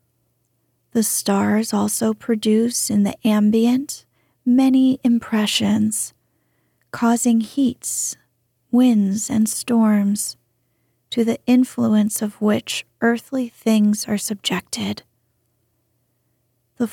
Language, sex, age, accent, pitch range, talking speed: English, female, 30-49, American, 200-240 Hz, 85 wpm